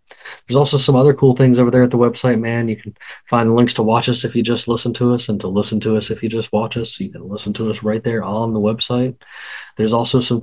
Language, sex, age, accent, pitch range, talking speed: English, male, 20-39, American, 110-125 Hz, 280 wpm